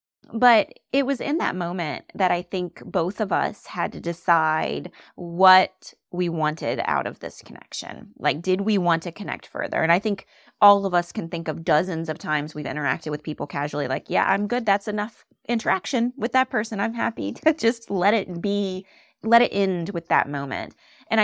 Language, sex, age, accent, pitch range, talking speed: English, female, 20-39, American, 165-210 Hz, 200 wpm